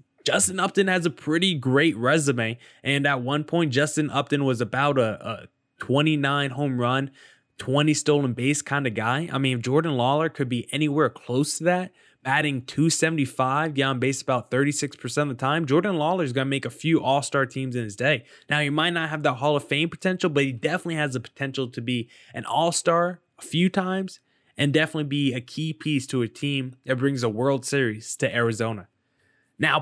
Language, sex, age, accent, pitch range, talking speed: English, male, 20-39, American, 130-160 Hz, 200 wpm